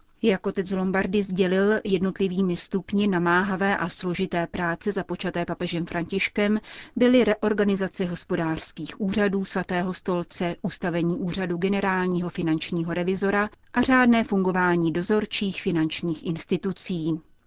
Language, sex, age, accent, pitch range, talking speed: Czech, female, 30-49, native, 175-205 Hz, 105 wpm